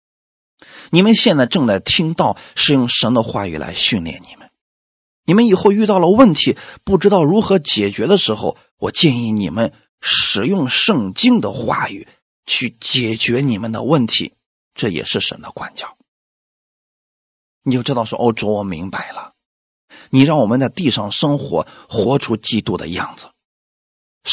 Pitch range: 110-180 Hz